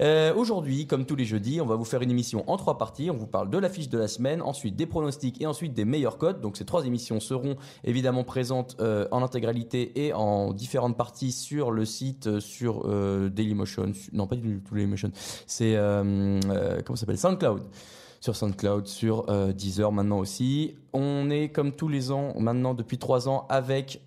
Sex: male